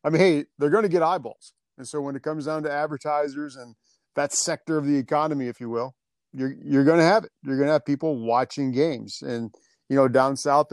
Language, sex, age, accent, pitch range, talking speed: English, male, 40-59, American, 125-155 Hz, 240 wpm